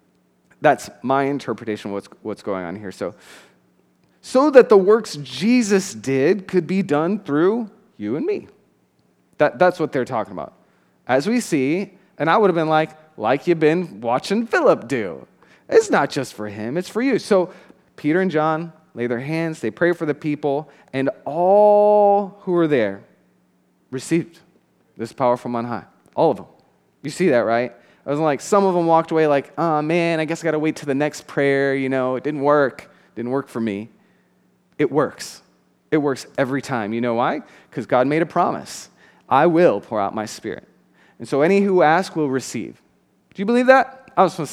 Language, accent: English, American